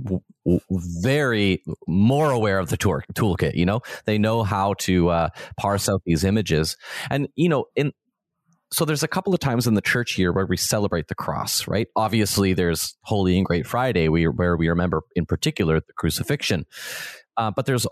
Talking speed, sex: 190 wpm, male